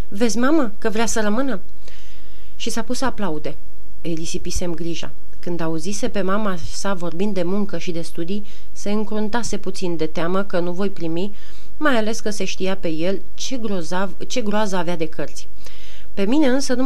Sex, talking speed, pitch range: female, 185 wpm, 175-210 Hz